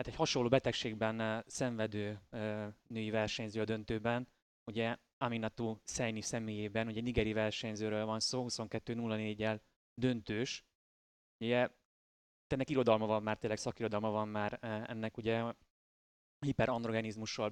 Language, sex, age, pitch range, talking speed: Hungarian, male, 20-39, 110-125 Hz, 115 wpm